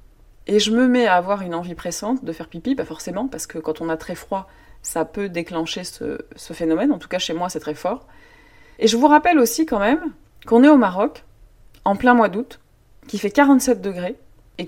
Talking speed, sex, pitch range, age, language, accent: 230 wpm, female, 165-235 Hz, 30-49, French, French